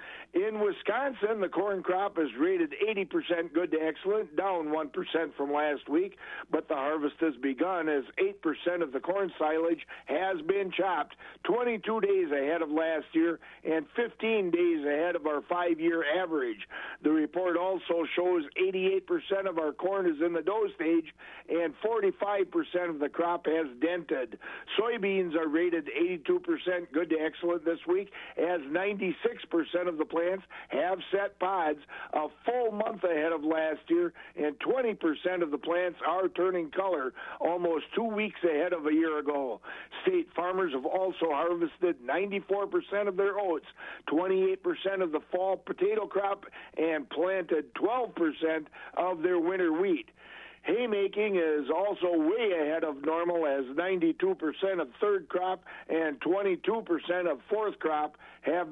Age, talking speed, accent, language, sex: 50-69, 145 wpm, American, English, male